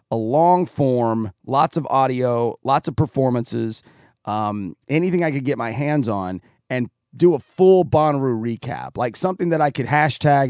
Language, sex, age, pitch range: English, male, 30-49, 120-150 Hz